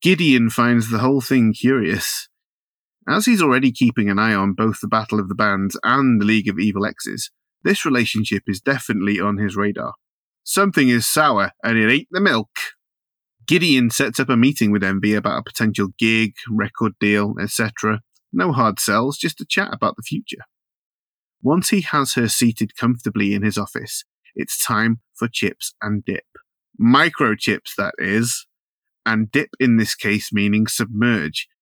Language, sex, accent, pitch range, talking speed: English, male, British, 105-125 Hz, 165 wpm